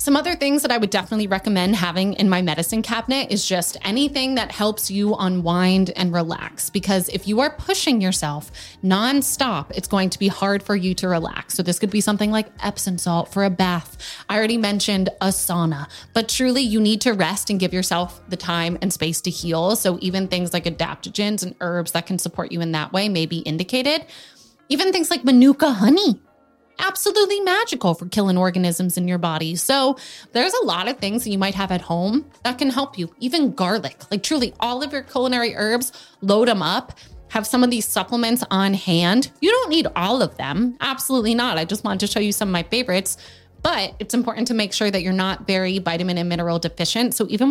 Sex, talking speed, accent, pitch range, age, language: female, 210 wpm, American, 180-240 Hz, 20-39, English